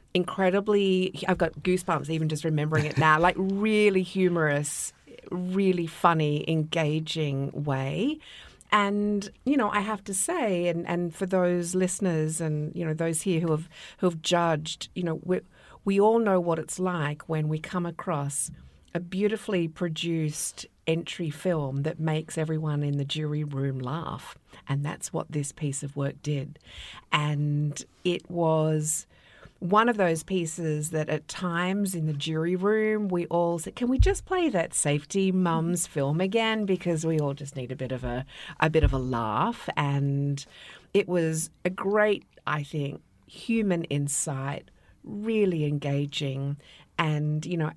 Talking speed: 155 wpm